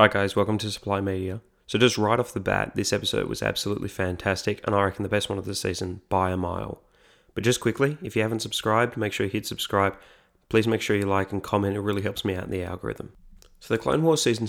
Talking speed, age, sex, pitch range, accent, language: 255 wpm, 20-39, male, 95-110 Hz, Australian, English